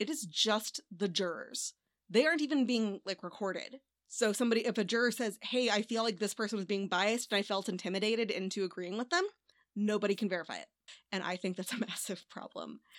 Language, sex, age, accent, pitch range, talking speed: English, female, 20-39, American, 200-265 Hz, 210 wpm